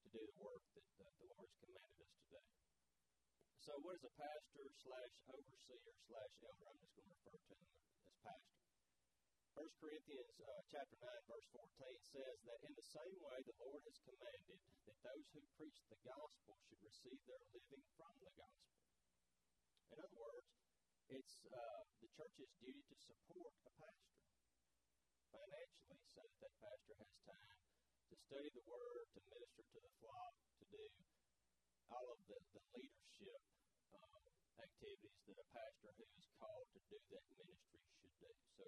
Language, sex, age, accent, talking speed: English, male, 40-59, American, 170 wpm